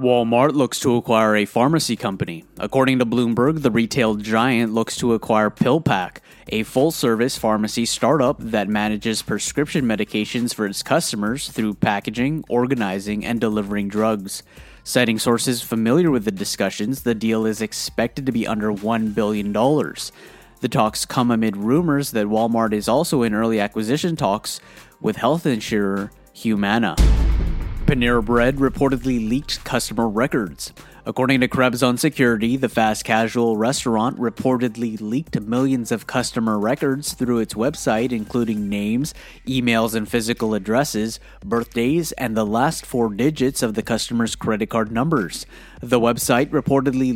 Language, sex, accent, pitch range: English, male, American, 110-130 Hz